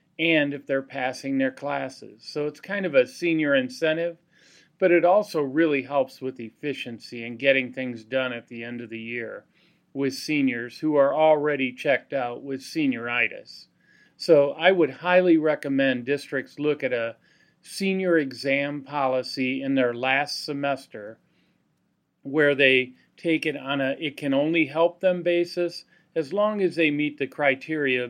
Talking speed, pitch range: 160 wpm, 130-160 Hz